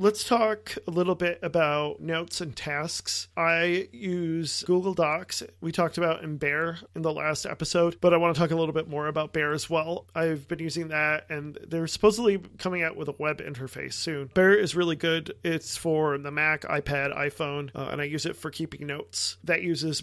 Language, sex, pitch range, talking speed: English, male, 150-170 Hz, 205 wpm